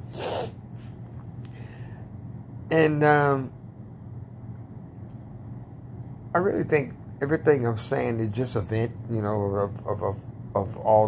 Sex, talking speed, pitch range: male, 105 wpm, 110-125 Hz